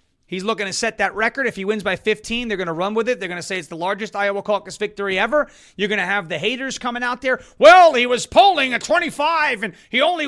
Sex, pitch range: male, 195-290 Hz